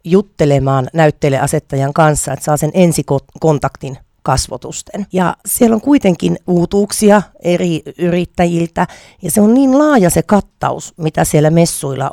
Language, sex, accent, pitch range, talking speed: Finnish, female, native, 140-185 Hz, 125 wpm